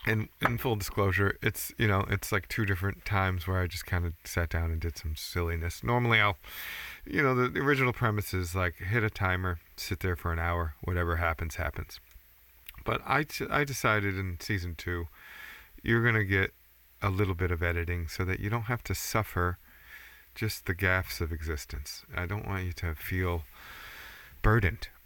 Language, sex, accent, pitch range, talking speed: English, male, American, 85-100 Hz, 190 wpm